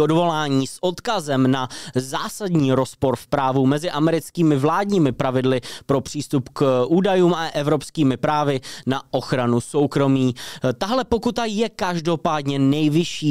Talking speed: 120 wpm